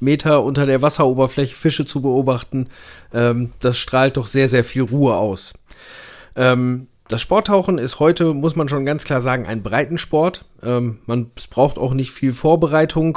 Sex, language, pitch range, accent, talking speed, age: male, German, 120-155 Hz, German, 165 wpm, 40-59